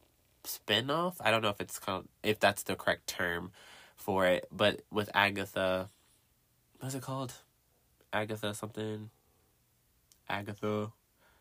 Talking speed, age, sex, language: 120 wpm, 20-39, male, English